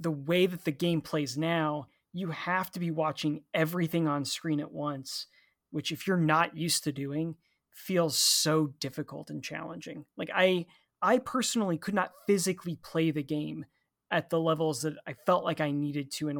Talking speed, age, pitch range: 185 wpm, 20-39, 150-175 Hz